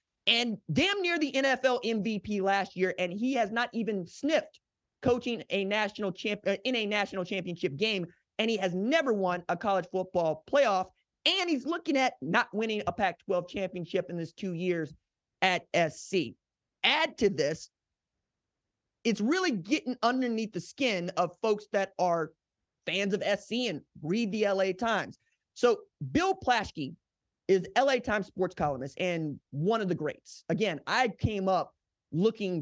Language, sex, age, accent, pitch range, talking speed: English, male, 30-49, American, 175-225 Hz, 160 wpm